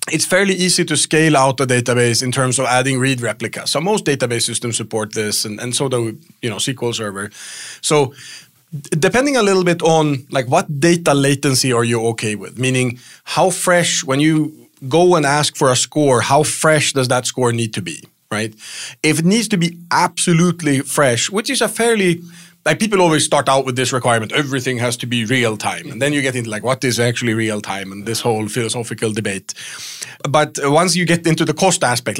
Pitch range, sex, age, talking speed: 120-155 Hz, male, 30-49, 210 wpm